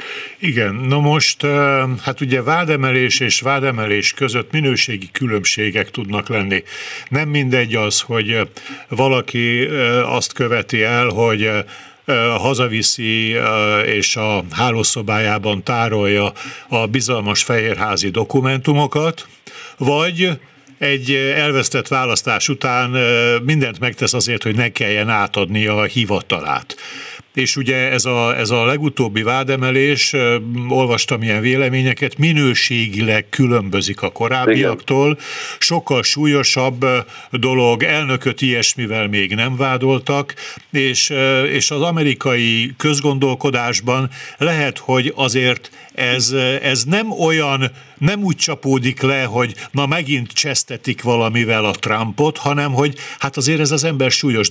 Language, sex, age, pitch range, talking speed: Hungarian, male, 60-79, 115-140 Hz, 110 wpm